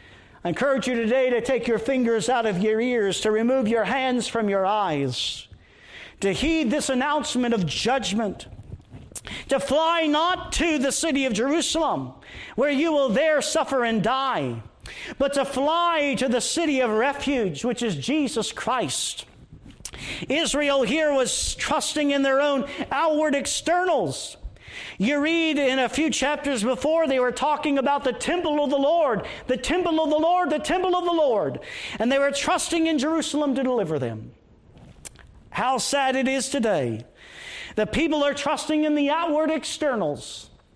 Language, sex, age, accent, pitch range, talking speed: English, male, 50-69, American, 225-295 Hz, 160 wpm